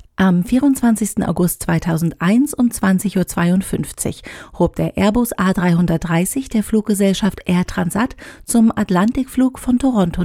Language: German